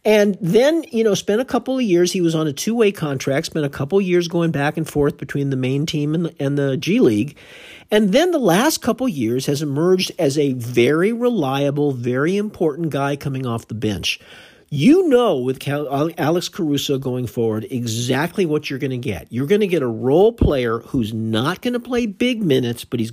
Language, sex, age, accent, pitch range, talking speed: English, male, 50-69, American, 140-225 Hz, 215 wpm